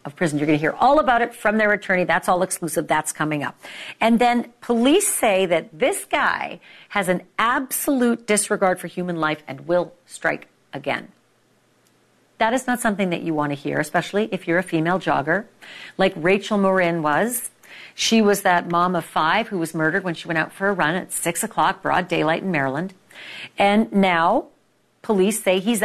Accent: American